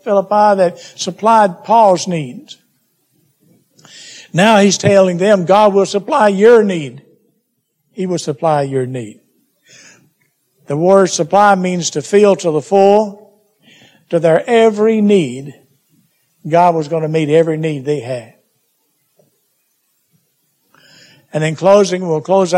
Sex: male